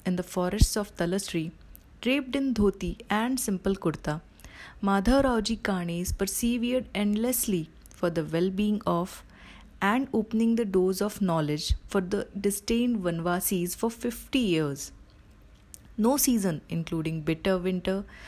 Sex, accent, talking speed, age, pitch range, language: female, native, 125 wpm, 30-49, 180-235 Hz, Hindi